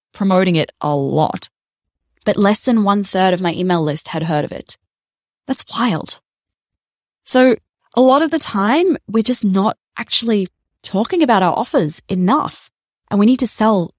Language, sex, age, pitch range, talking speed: English, female, 10-29, 180-240 Hz, 165 wpm